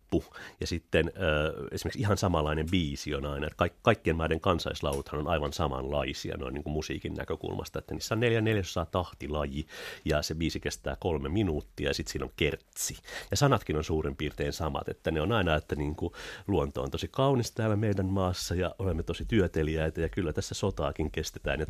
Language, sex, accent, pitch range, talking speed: Finnish, male, native, 75-100 Hz, 185 wpm